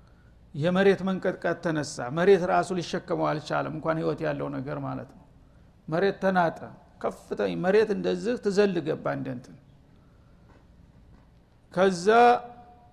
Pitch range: 155-200 Hz